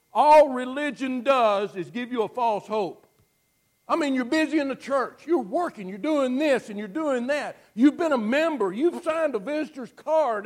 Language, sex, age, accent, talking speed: English, male, 60-79, American, 195 wpm